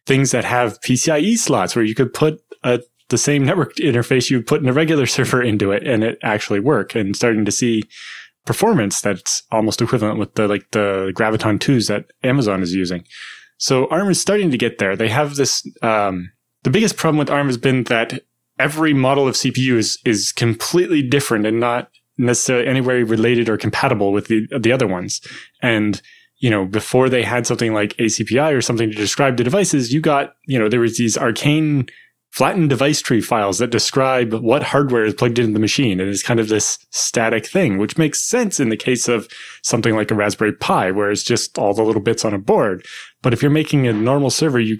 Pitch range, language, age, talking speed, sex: 110-140 Hz, English, 20-39, 210 wpm, male